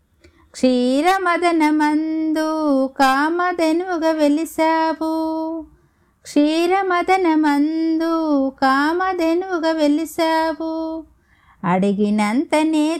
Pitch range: 285-340 Hz